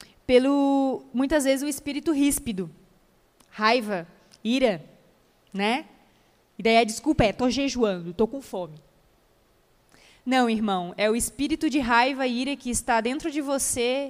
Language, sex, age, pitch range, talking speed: English, female, 20-39, 220-275 Hz, 140 wpm